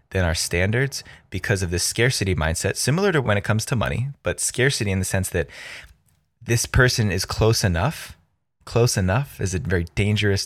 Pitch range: 95-115 Hz